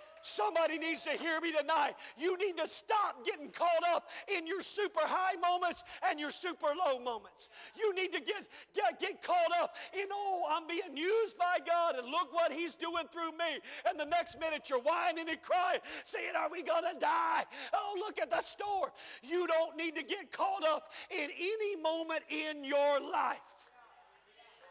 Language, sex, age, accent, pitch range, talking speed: English, male, 50-69, American, 300-360 Hz, 185 wpm